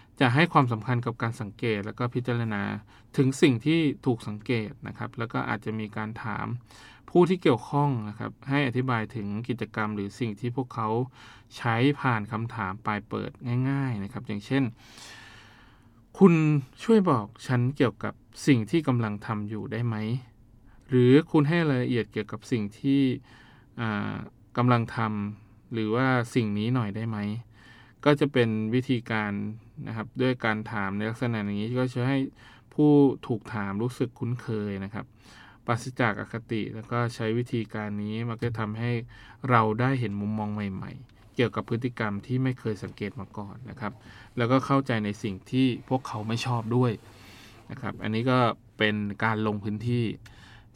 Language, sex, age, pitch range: Thai, male, 20-39, 110-125 Hz